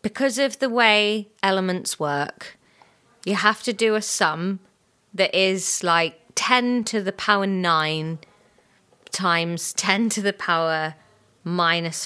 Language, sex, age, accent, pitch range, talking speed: English, female, 20-39, British, 175-225 Hz, 130 wpm